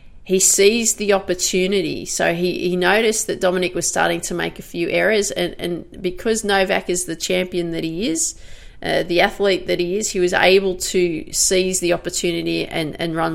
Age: 30-49